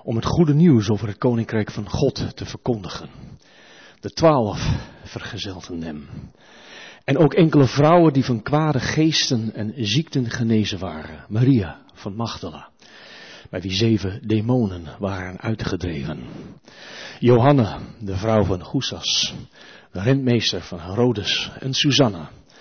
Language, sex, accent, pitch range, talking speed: Dutch, male, Dutch, 100-130 Hz, 125 wpm